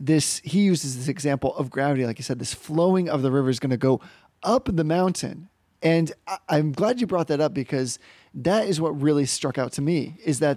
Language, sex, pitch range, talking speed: English, male, 140-185 Hz, 235 wpm